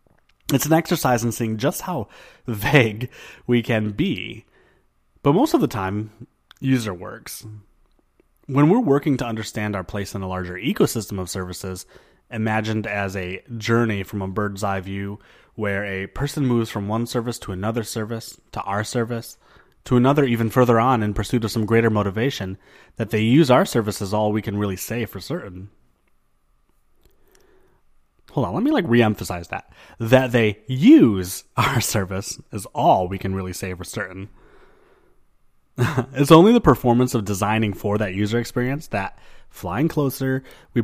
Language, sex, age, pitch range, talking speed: English, male, 30-49, 100-120 Hz, 165 wpm